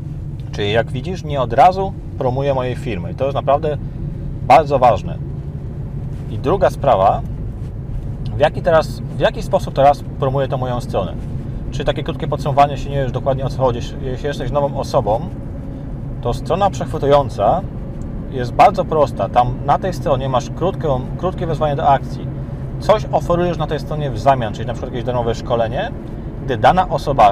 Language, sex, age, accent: Polish, male, 30-49, native